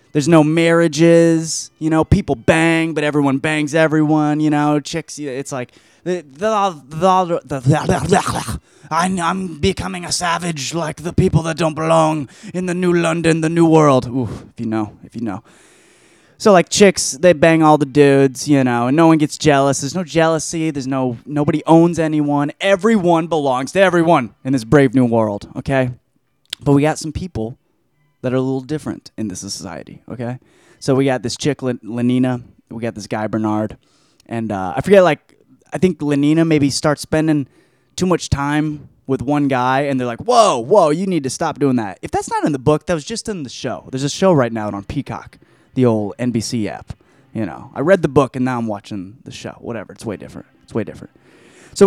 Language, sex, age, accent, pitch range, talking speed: English, male, 20-39, American, 125-165 Hz, 195 wpm